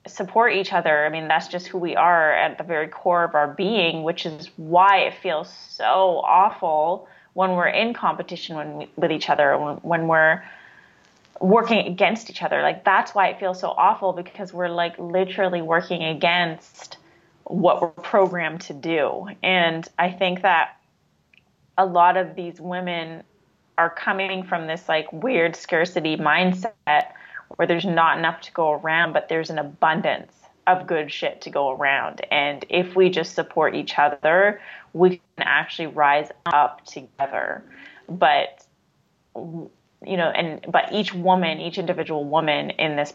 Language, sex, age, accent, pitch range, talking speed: English, female, 20-39, American, 155-185 Hz, 165 wpm